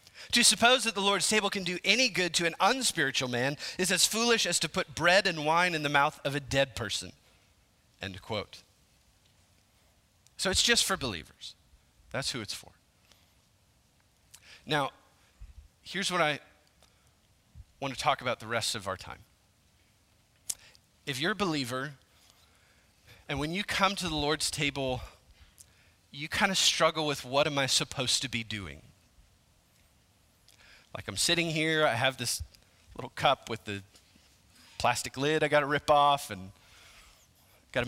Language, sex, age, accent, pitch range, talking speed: English, male, 30-49, American, 100-155 Hz, 155 wpm